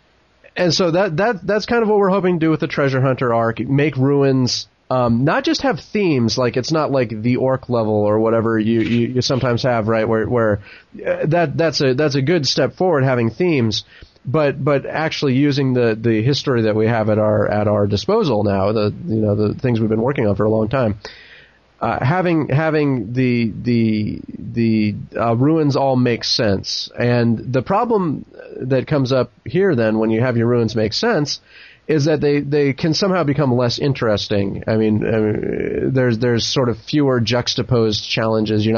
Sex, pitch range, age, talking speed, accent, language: male, 110-140 Hz, 30-49, 200 wpm, American, English